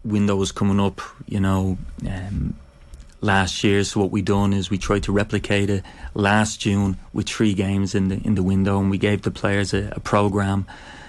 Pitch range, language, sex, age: 95-110 Hz, English, male, 30-49